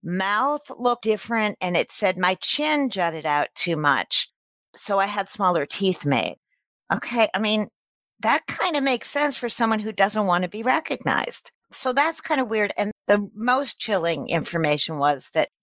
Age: 40-59